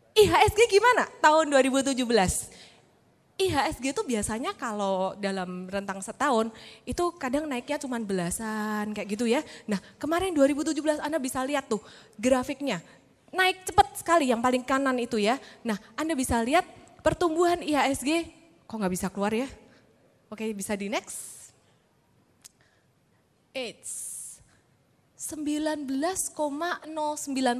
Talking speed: 115 wpm